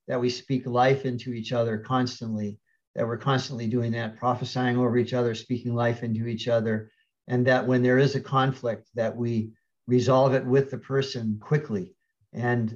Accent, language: American, English